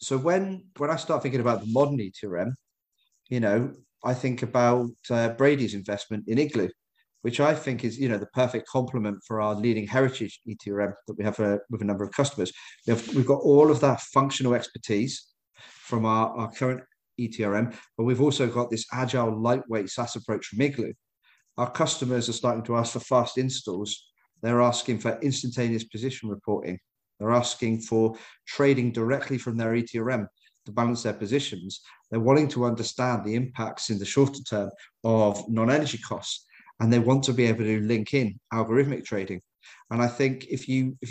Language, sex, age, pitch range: English, male, 40-59, 110-130 Hz